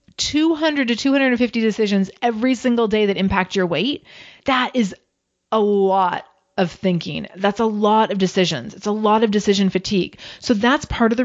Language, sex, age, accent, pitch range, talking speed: English, female, 30-49, American, 180-220 Hz, 175 wpm